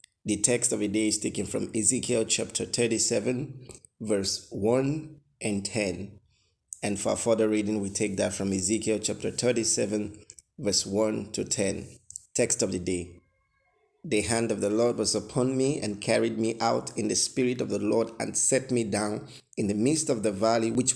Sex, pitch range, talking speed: male, 105-120 Hz, 180 wpm